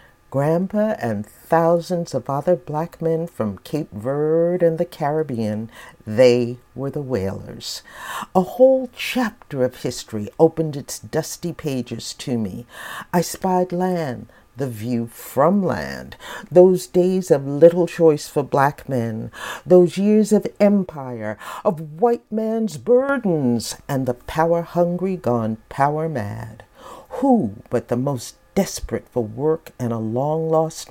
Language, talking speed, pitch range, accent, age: English, 130 wpm, 120-175 Hz, American, 50-69